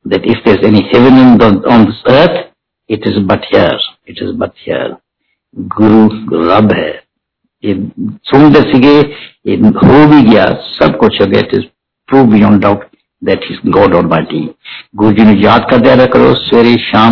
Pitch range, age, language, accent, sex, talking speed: 115-155 Hz, 60-79, Hindi, native, male, 170 wpm